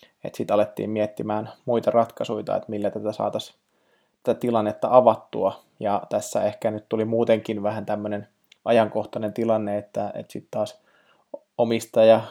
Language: Finnish